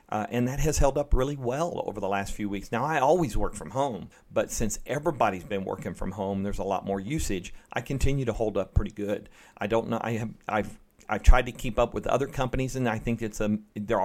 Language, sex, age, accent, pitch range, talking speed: English, male, 40-59, American, 100-120 Hz, 245 wpm